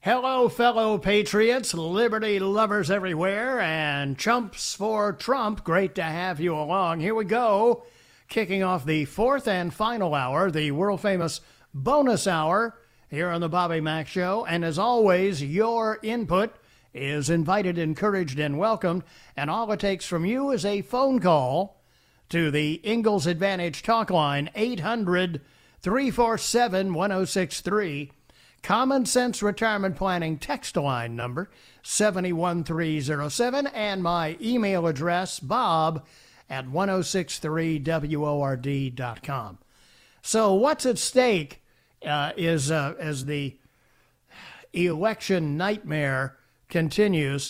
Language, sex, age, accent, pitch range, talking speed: English, male, 50-69, American, 150-210 Hz, 115 wpm